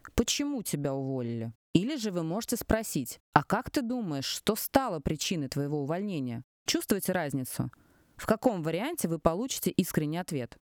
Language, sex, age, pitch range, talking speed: Russian, female, 20-39, 145-190 Hz, 145 wpm